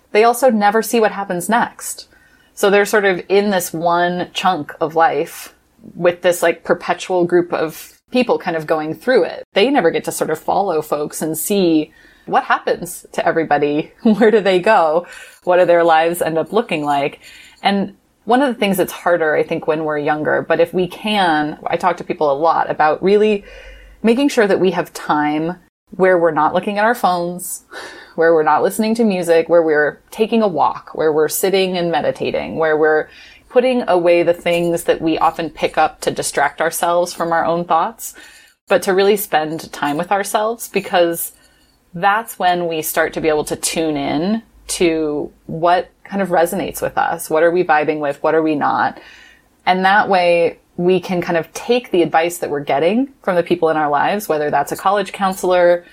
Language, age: English, 20-39